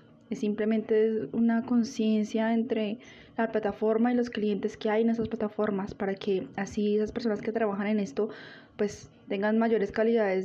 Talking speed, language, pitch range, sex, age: 160 wpm, Spanish, 205-235 Hz, female, 20-39